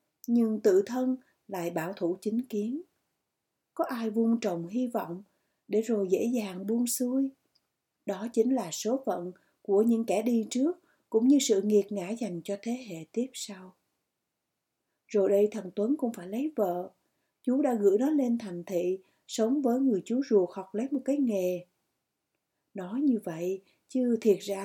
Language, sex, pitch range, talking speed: Vietnamese, female, 195-255 Hz, 175 wpm